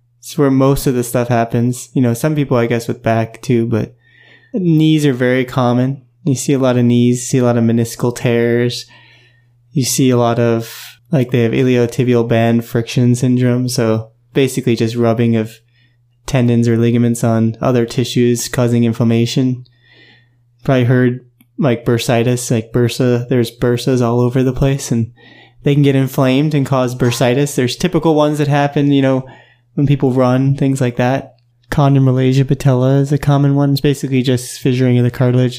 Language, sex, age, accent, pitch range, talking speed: English, male, 20-39, American, 120-135 Hz, 175 wpm